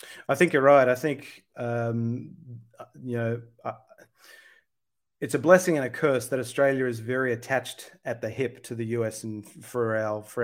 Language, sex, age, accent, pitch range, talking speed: English, male, 30-49, Australian, 115-135 Hz, 170 wpm